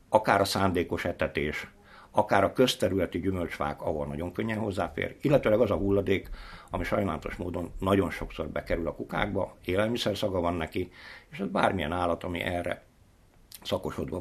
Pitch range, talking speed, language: 85-100 Hz, 145 wpm, Hungarian